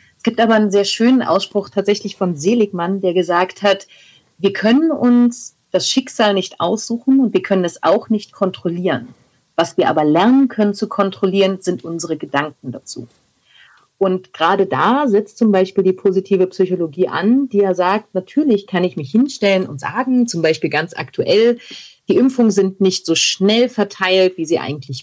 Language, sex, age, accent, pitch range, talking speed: German, female, 40-59, German, 170-215 Hz, 175 wpm